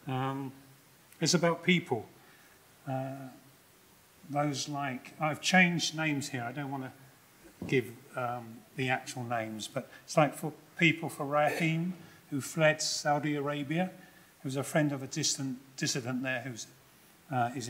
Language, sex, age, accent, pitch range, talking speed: English, male, 40-59, British, 130-155 Hz, 135 wpm